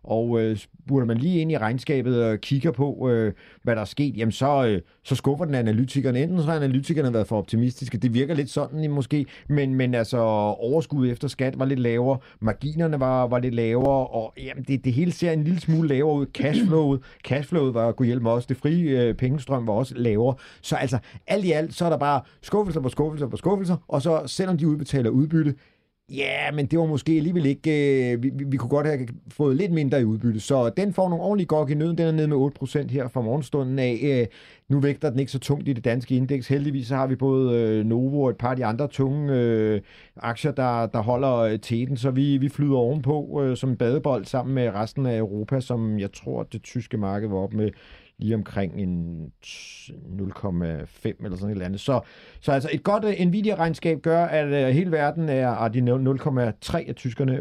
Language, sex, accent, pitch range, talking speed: Danish, male, native, 120-145 Hz, 215 wpm